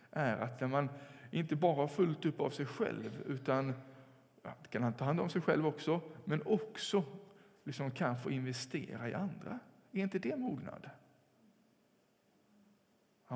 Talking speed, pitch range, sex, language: 140 wpm, 130-175 Hz, male, English